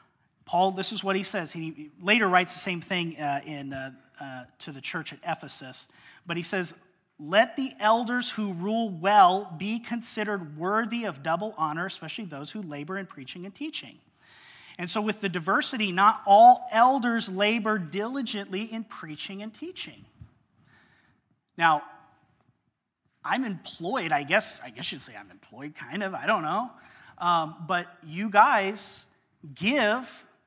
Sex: male